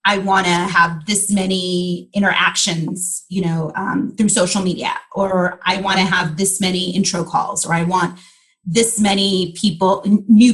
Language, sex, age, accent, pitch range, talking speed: English, female, 30-49, American, 180-230 Hz, 170 wpm